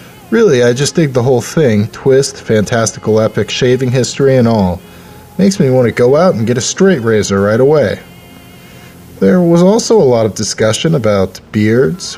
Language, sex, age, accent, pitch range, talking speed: English, male, 30-49, American, 100-130 Hz, 175 wpm